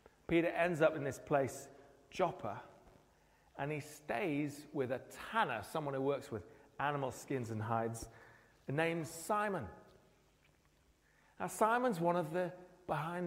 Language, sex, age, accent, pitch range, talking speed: English, male, 40-59, British, 135-180 Hz, 130 wpm